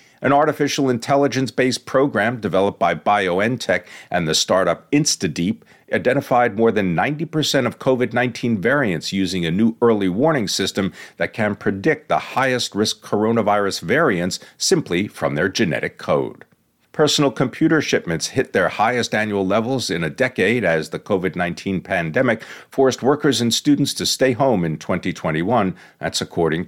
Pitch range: 105-135 Hz